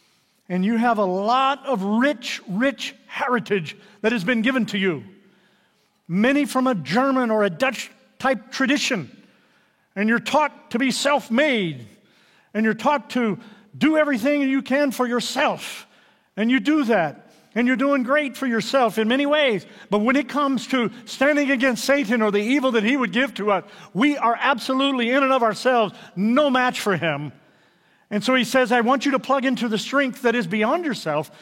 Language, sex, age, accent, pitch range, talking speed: English, male, 50-69, American, 205-260 Hz, 185 wpm